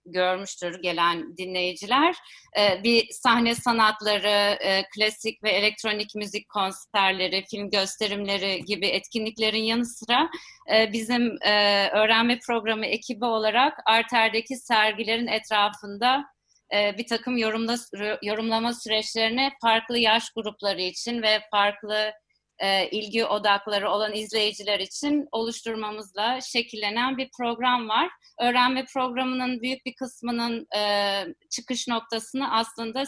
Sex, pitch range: female, 210-245 Hz